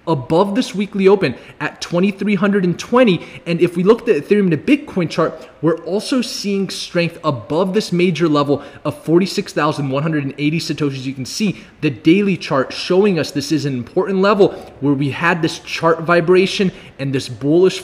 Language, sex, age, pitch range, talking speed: English, male, 20-39, 155-195 Hz, 200 wpm